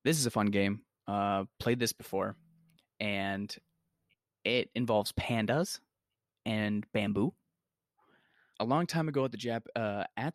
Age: 20-39